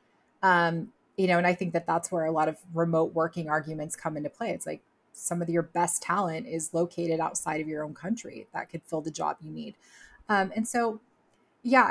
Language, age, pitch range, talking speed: English, 20-39, 160-185 Hz, 215 wpm